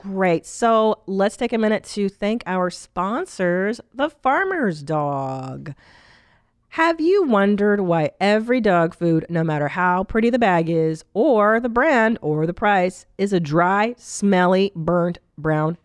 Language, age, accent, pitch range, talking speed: English, 40-59, American, 175-230 Hz, 150 wpm